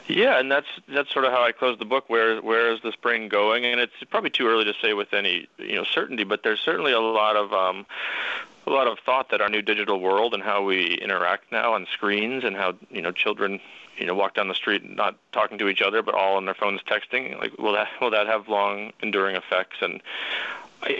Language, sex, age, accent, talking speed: English, male, 30-49, American, 245 wpm